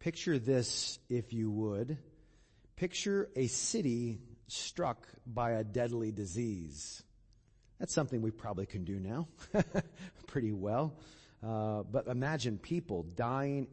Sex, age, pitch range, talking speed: male, 40-59, 110-150 Hz, 120 wpm